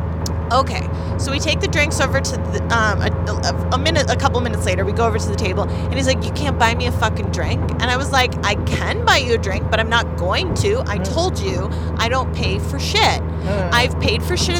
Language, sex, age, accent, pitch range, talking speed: English, female, 30-49, American, 80-85 Hz, 245 wpm